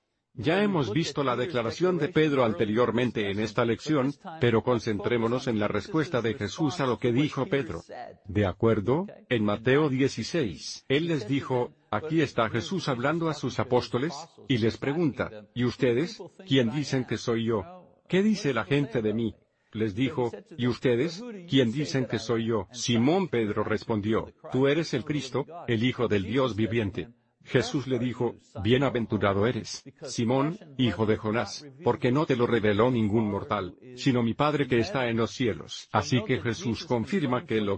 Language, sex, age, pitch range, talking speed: Spanish, male, 50-69, 110-140 Hz, 165 wpm